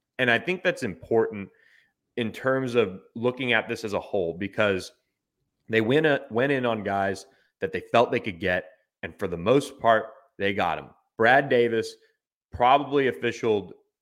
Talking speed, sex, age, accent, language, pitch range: 165 wpm, male, 30-49, American, English, 100-130 Hz